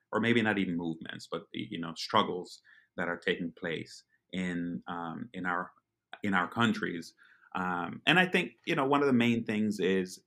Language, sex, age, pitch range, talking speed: Spanish, male, 30-49, 85-100 Hz, 185 wpm